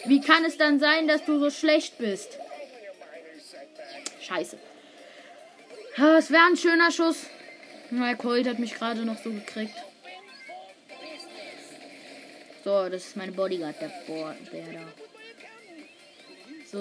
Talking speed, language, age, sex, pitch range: 120 wpm, German, 20-39, female, 230-320 Hz